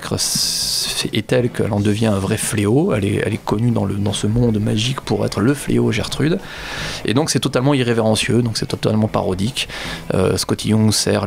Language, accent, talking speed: French, French, 195 wpm